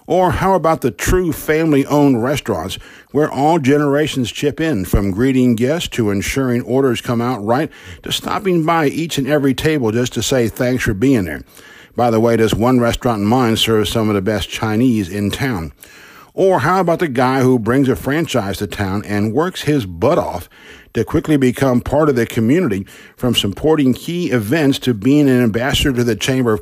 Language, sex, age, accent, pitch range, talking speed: English, male, 50-69, American, 110-140 Hz, 195 wpm